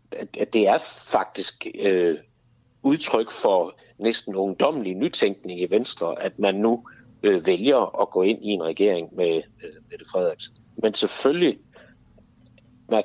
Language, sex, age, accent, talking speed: Danish, male, 60-79, native, 120 wpm